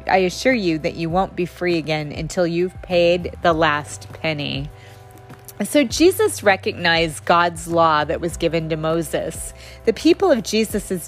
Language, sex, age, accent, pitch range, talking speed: English, female, 30-49, American, 155-200 Hz, 155 wpm